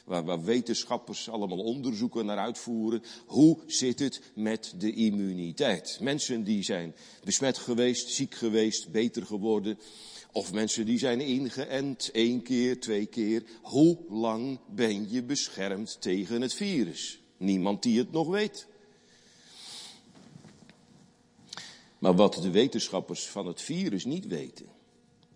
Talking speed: 125 wpm